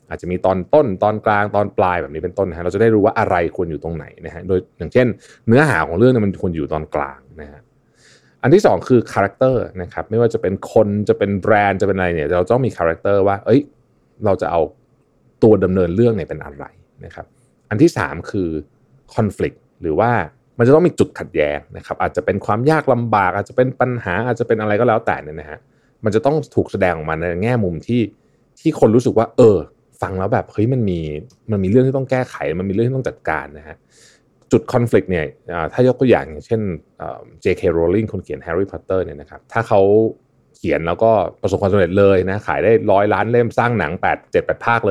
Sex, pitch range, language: male, 95-120 Hz, Thai